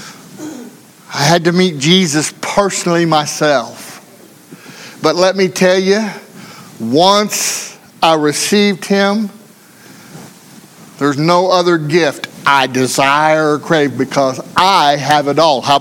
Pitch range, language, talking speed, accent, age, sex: 155-205 Hz, English, 115 wpm, American, 60-79, male